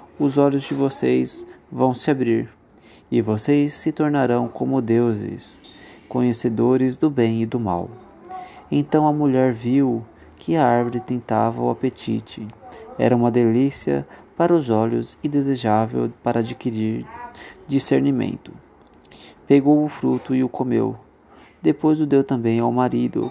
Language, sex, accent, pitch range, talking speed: Portuguese, male, Brazilian, 115-145 Hz, 135 wpm